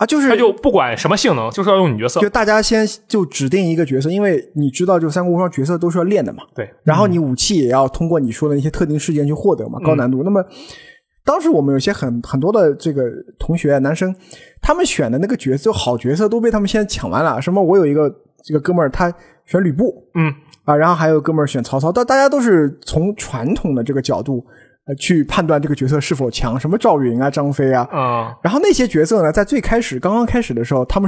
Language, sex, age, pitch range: Chinese, male, 20-39, 140-205 Hz